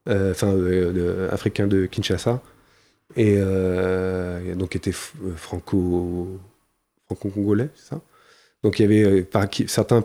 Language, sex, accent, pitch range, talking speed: French, male, French, 100-120 Hz, 120 wpm